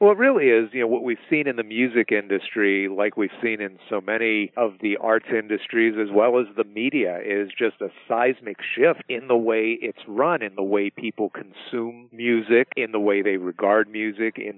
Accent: American